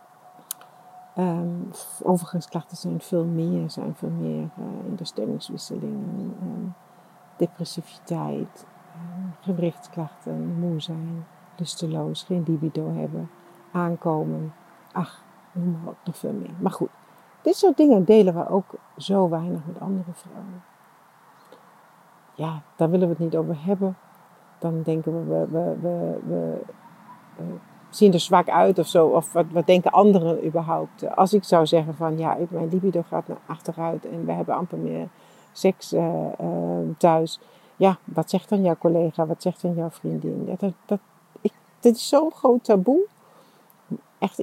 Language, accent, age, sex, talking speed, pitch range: English, Dutch, 60-79, female, 150 wpm, 165-190 Hz